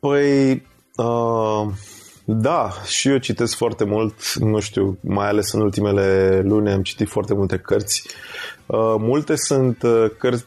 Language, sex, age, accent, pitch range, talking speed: Romanian, male, 20-39, native, 100-115 Hz, 125 wpm